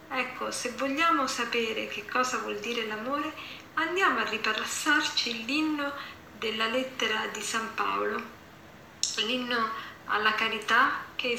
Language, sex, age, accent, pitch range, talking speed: Italian, female, 40-59, native, 210-265 Hz, 115 wpm